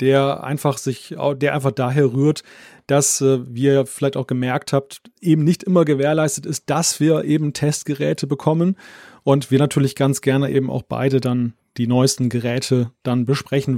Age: 30-49